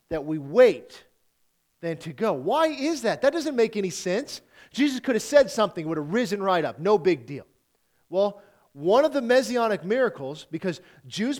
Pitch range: 155-225 Hz